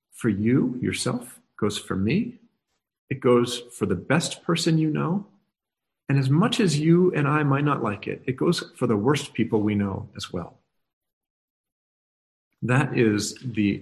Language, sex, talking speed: English, male, 165 wpm